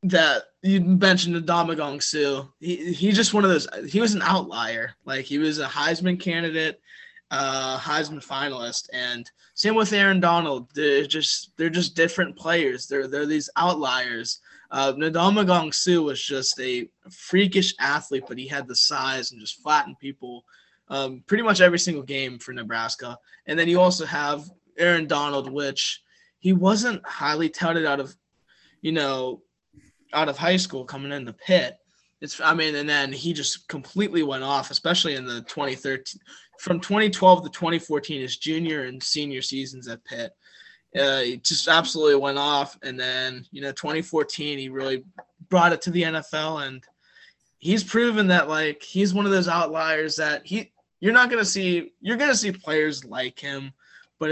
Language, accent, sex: English, American, male